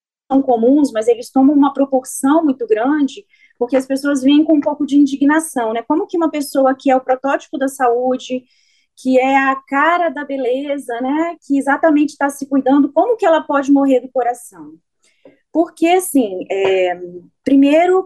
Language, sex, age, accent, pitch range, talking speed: Portuguese, female, 30-49, Brazilian, 235-315 Hz, 170 wpm